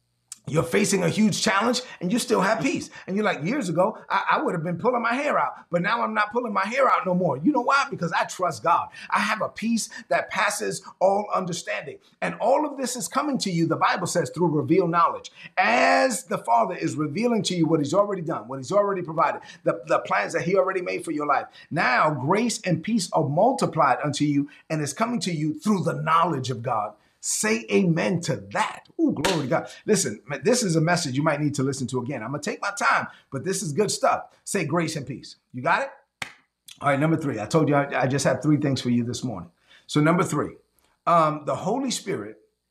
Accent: American